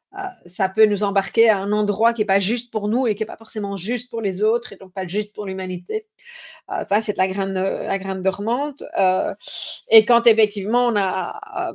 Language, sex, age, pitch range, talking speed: French, female, 40-59, 205-290 Hz, 235 wpm